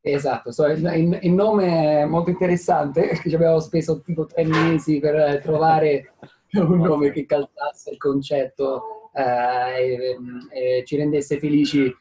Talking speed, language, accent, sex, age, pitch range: 135 wpm, Italian, native, male, 20-39, 135-160 Hz